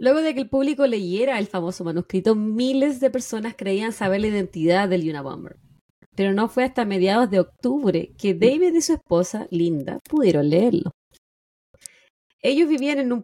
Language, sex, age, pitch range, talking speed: Spanish, female, 20-39, 180-250 Hz, 170 wpm